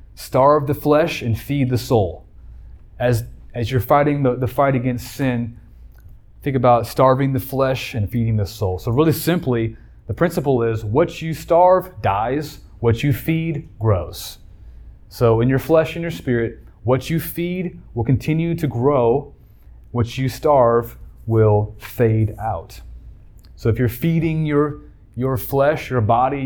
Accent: American